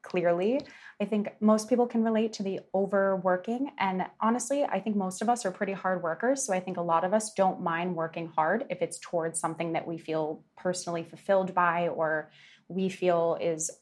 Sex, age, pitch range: female, 20-39, 175-195 Hz